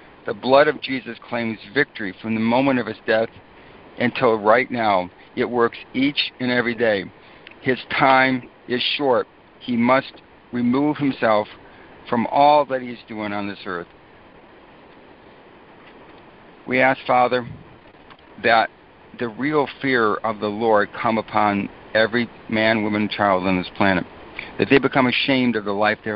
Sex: male